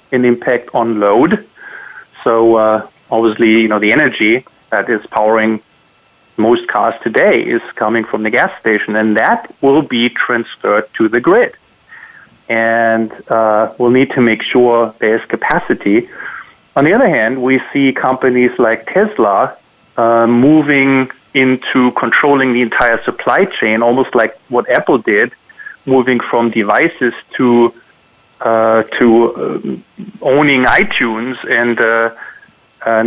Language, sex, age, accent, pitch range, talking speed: English, male, 30-49, German, 115-130 Hz, 130 wpm